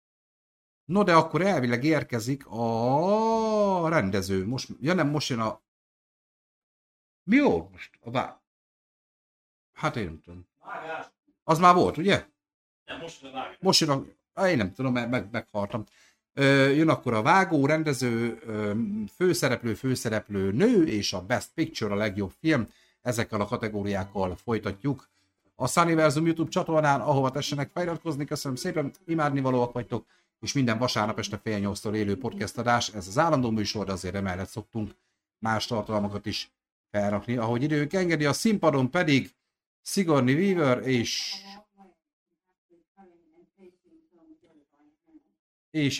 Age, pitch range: 50-69, 110-170 Hz